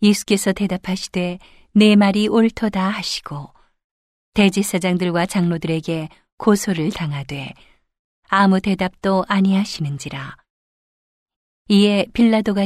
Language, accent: Korean, native